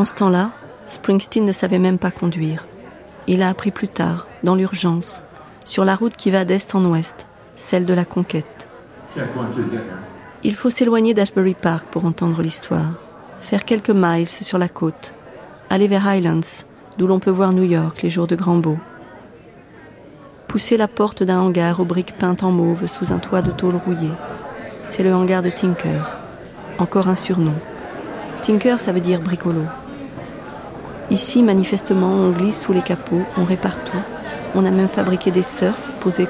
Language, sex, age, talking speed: French, female, 40-59, 170 wpm